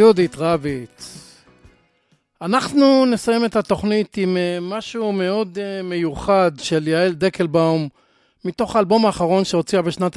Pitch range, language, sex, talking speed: 165-200 Hz, Hebrew, male, 105 wpm